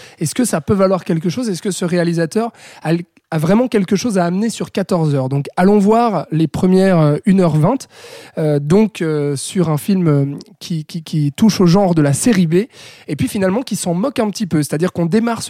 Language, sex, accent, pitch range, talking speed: French, male, French, 165-205 Hz, 205 wpm